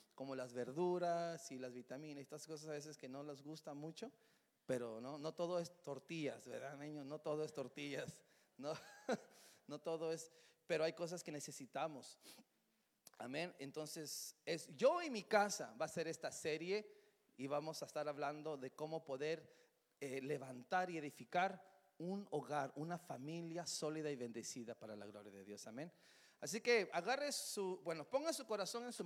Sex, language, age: male, English, 40-59